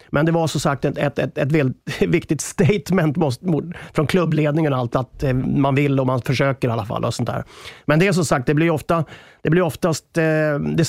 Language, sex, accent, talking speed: English, male, Swedish, 215 wpm